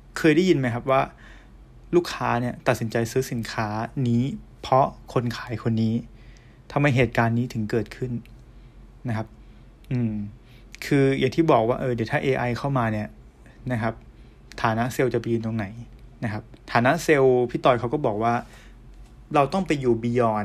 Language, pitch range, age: Thai, 115-130 Hz, 20-39